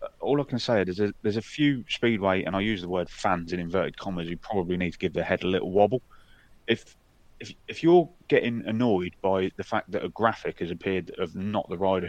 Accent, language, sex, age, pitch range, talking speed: British, English, male, 30-49, 90-120 Hz, 230 wpm